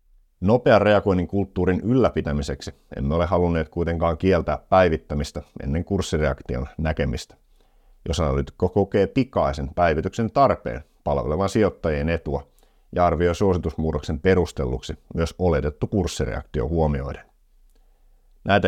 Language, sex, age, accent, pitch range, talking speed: Finnish, male, 50-69, native, 75-95 Hz, 100 wpm